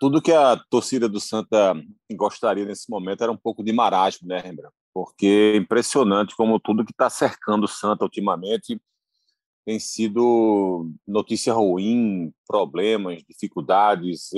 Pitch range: 105-155 Hz